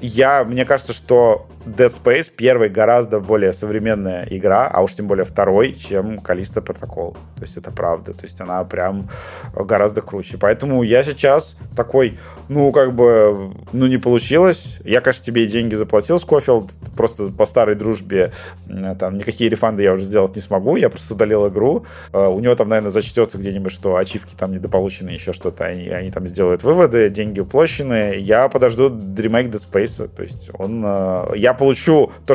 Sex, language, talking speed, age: male, Russian, 165 wpm, 30-49